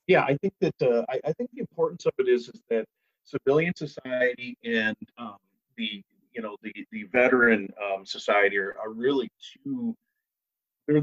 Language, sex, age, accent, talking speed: English, male, 40-59, American, 175 wpm